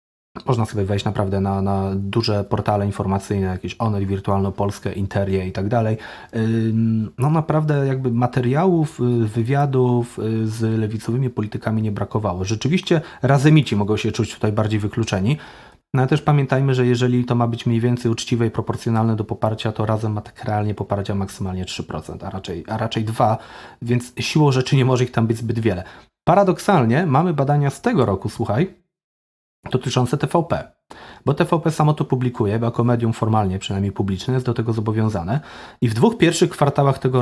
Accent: native